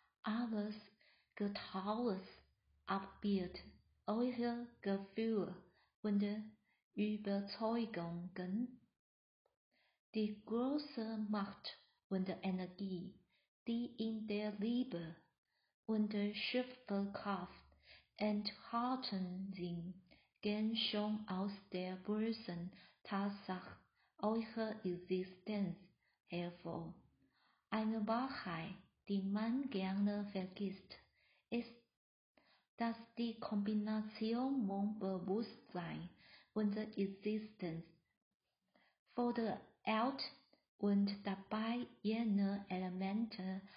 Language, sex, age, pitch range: Chinese, female, 50-69, 190-220 Hz